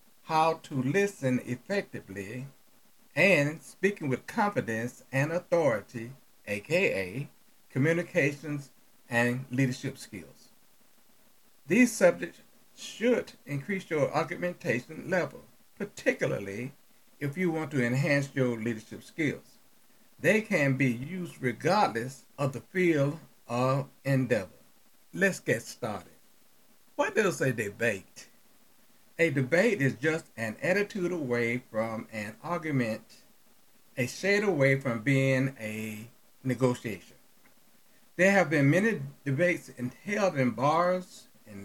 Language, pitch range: English, 125-175 Hz